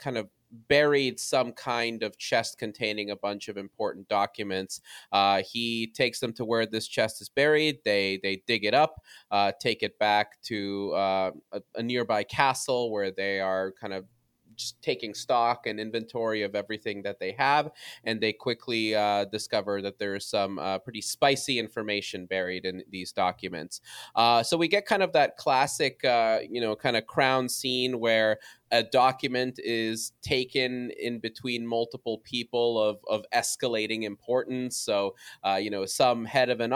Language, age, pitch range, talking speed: English, 20-39, 100-125 Hz, 175 wpm